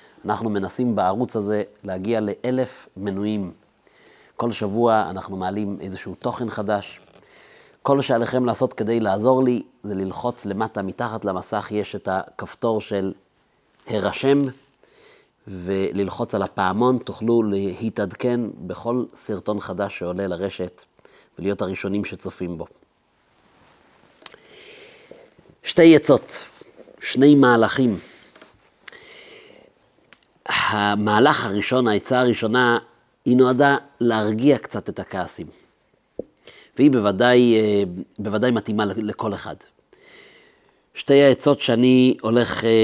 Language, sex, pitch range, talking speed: Hebrew, male, 105-125 Hz, 95 wpm